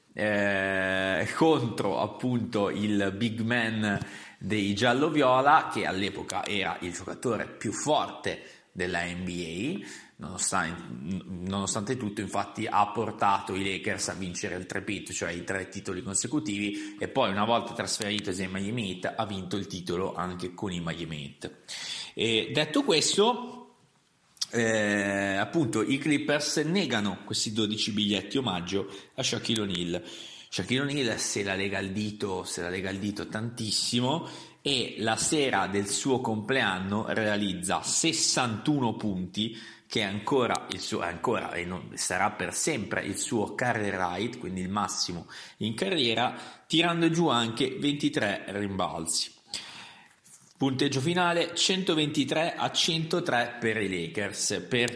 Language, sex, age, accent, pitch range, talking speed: Italian, male, 30-49, native, 95-125 Hz, 135 wpm